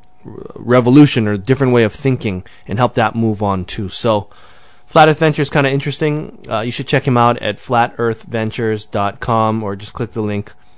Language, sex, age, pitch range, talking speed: English, male, 20-39, 110-145 Hz, 180 wpm